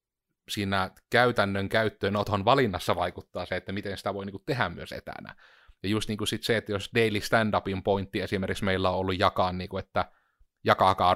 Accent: native